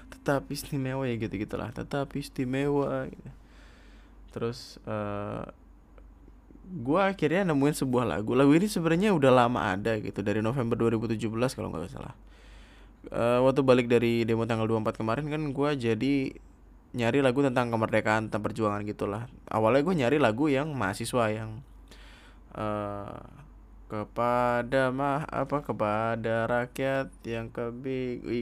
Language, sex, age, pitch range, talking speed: Indonesian, male, 20-39, 105-130 Hz, 125 wpm